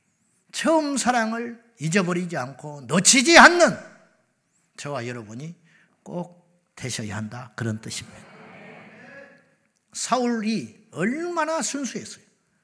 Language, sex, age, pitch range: Korean, male, 50-69, 160-230 Hz